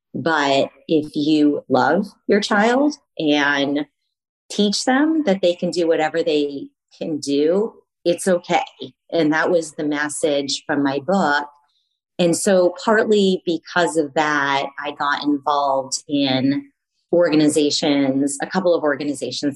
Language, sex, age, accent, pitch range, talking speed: English, female, 30-49, American, 140-175 Hz, 130 wpm